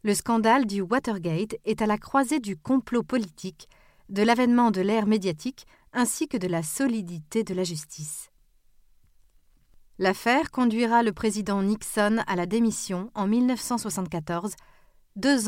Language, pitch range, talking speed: French, 190-235 Hz, 135 wpm